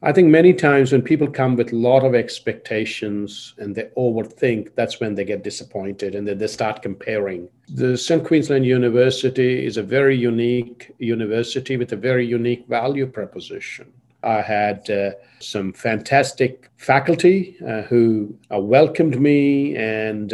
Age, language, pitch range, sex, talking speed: 50-69, English, 115-140 Hz, male, 150 wpm